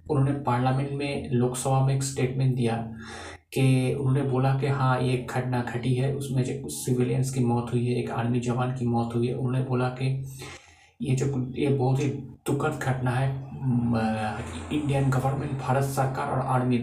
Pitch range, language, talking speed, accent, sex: 125-140 Hz, Hindi, 180 wpm, native, male